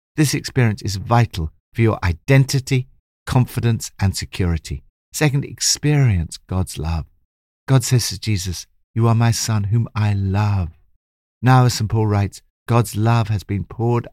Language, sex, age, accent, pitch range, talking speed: English, male, 60-79, British, 85-115 Hz, 150 wpm